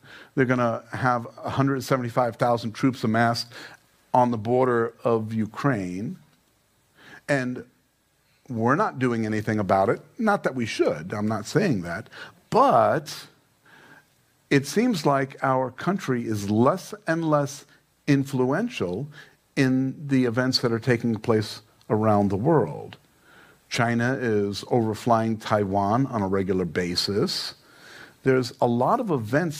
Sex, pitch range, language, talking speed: male, 115-145 Hz, English, 125 wpm